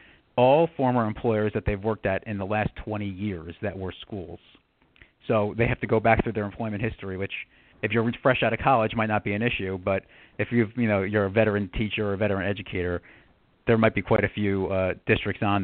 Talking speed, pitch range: 225 wpm, 100-115 Hz